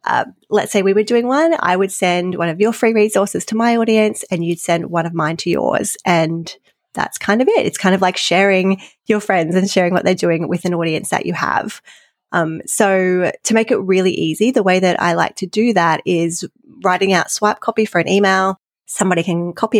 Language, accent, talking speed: English, Australian, 225 wpm